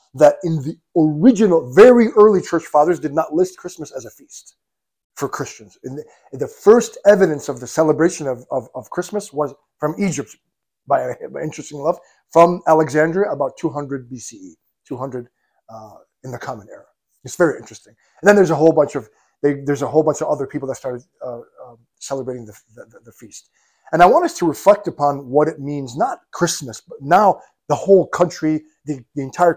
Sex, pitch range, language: male, 140-195 Hz, English